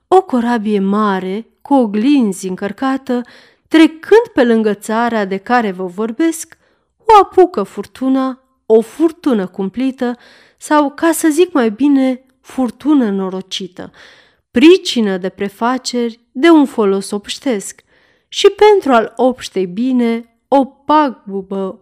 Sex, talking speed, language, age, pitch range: female, 115 wpm, Romanian, 30-49, 205-275 Hz